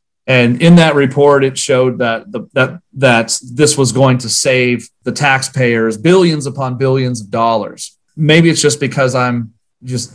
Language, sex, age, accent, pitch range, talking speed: English, male, 40-59, American, 115-135 Hz, 165 wpm